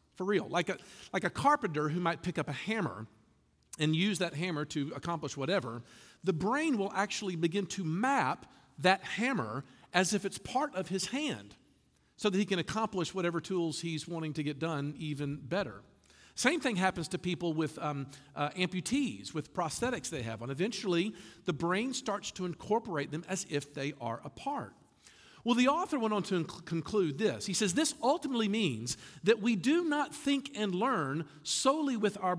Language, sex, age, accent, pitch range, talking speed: English, male, 50-69, American, 150-215 Hz, 185 wpm